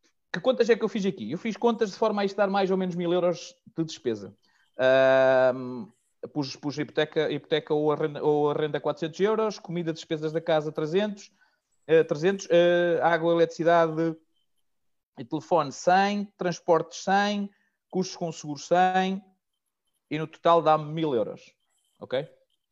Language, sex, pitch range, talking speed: Portuguese, male, 160-200 Hz, 155 wpm